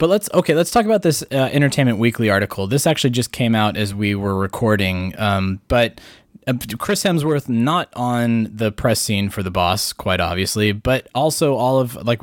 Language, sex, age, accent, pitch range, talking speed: English, male, 20-39, American, 105-135 Hz, 195 wpm